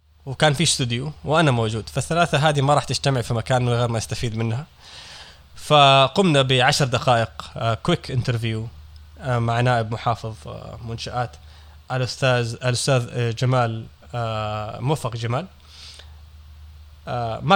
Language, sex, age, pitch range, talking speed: Arabic, male, 20-39, 110-135 Hz, 105 wpm